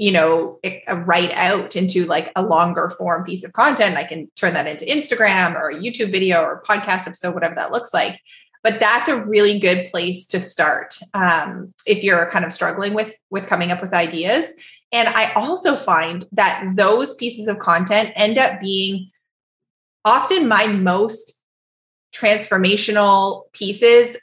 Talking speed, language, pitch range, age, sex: 165 wpm, English, 185-235 Hz, 20-39, female